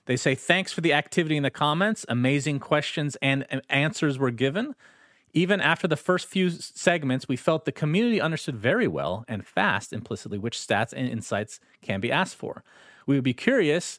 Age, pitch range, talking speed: 30-49, 125-170 Hz, 185 wpm